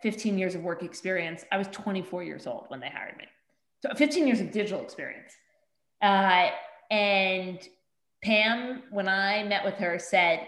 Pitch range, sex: 175-210 Hz, female